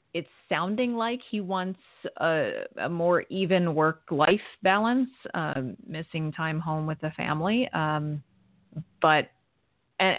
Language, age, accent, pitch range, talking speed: English, 30-49, American, 150-180 Hz, 130 wpm